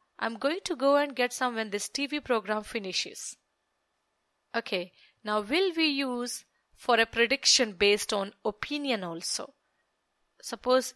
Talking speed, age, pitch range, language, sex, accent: 135 wpm, 30-49, 210-285 Hz, English, female, Indian